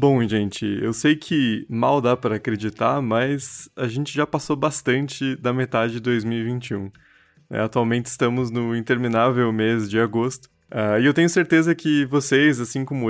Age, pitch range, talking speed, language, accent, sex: 20-39, 115-150 Hz, 155 wpm, Portuguese, Brazilian, male